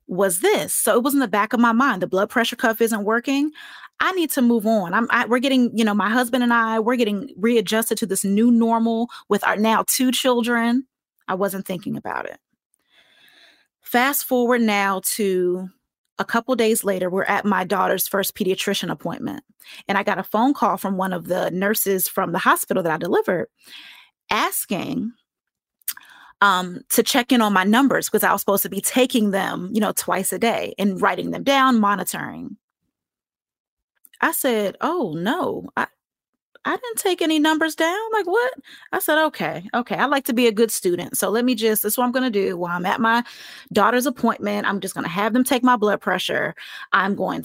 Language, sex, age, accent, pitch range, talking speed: English, female, 20-39, American, 200-255 Hz, 200 wpm